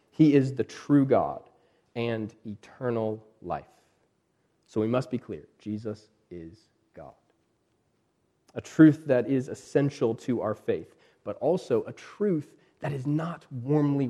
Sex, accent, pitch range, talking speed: male, American, 115-155 Hz, 135 wpm